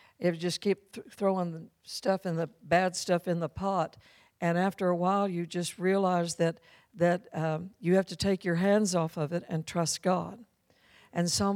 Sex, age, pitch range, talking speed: female, 60-79, 170-195 Hz, 190 wpm